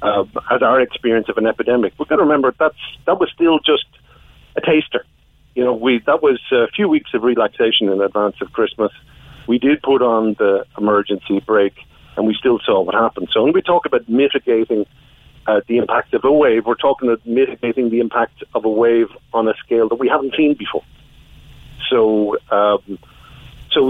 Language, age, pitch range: English, 50-69, 105-135 Hz